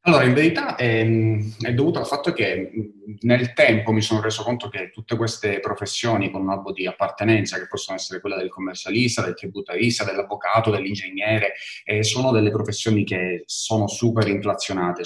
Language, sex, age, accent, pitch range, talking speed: Italian, male, 30-49, native, 95-110 Hz, 165 wpm